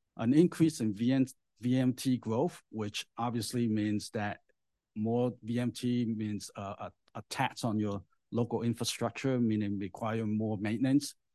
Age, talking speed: 50-69, 120 wpm